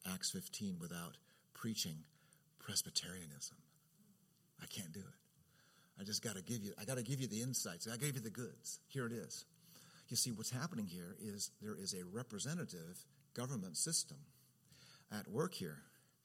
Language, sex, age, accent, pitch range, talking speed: English, male, 50-69, American, 110-155 Hz, 165 wpm